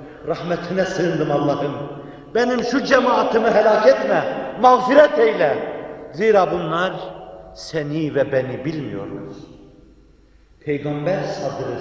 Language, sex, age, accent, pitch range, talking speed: Turkish, male, 60-79, native, 140-185 Hz, 90 wpm